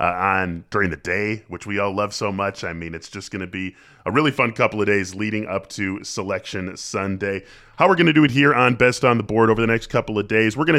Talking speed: 275 wpm